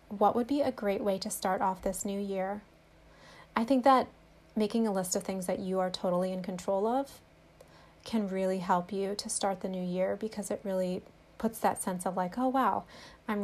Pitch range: 190-235 Hz